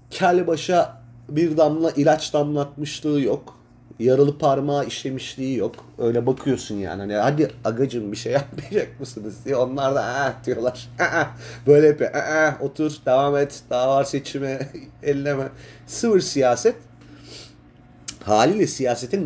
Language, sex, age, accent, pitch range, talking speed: Turkish, male, 30-49, native, 130-160 Hz, 120 wpm